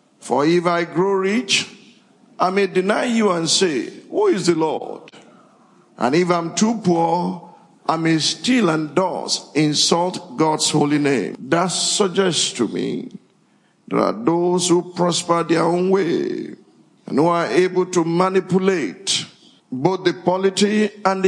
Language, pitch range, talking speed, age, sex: English, 160-215 Hz, 145 wpm, 50-69, male